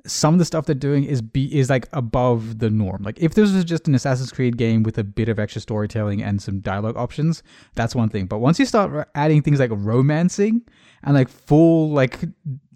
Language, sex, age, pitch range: English, male, 20-39, 115-165 Hz